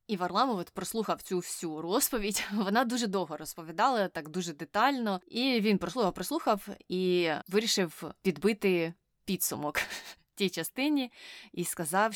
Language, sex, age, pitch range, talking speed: Ukrainian, female, 20-39, 170-215 Hz, 125 wpm